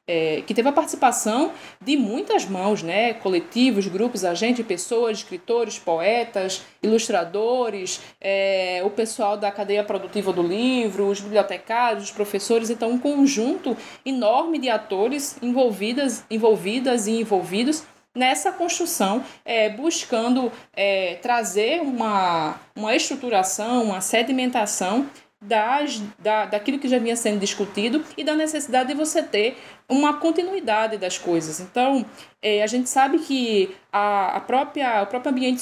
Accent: Brazilian